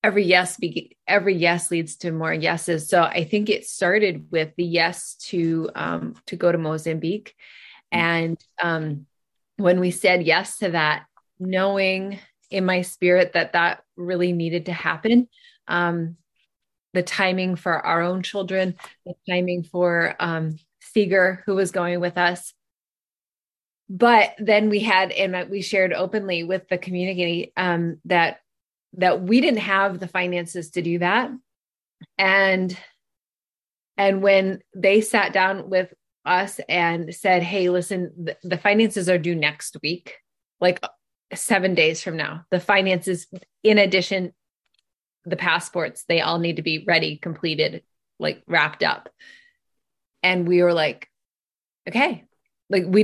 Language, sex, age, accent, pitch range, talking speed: English, female, 20-39, American, 170-190 Hz, 140 wpm